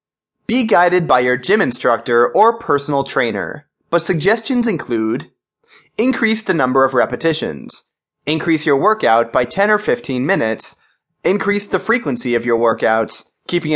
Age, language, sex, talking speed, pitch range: 20-39, English, male, 140 wpm, 125-200 Hz